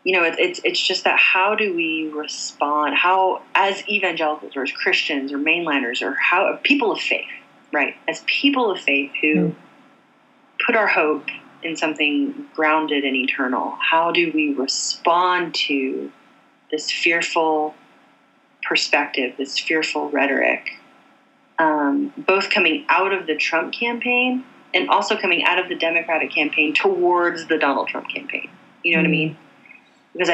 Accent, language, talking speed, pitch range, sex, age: American, English, 150 wpm, 145-190 Hz, female, 30-49